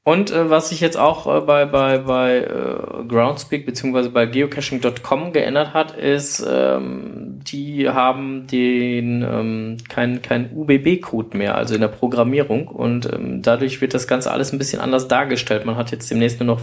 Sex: male